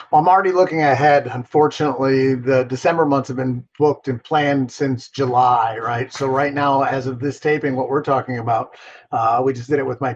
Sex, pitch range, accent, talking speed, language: male, 135-180 Hz, American, 205 wpm, English